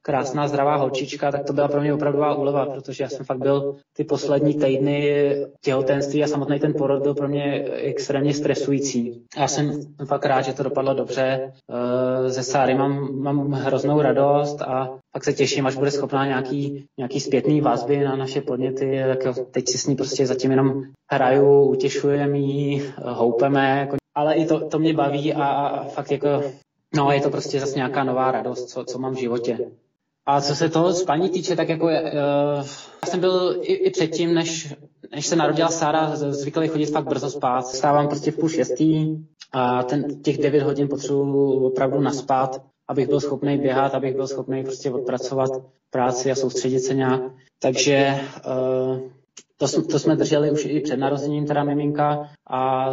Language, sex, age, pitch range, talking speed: Czech, male, 20-39, 130-145 Hz, 175 wpm